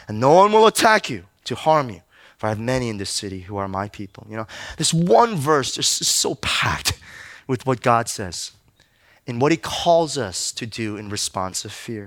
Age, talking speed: 20-39, 215 wpm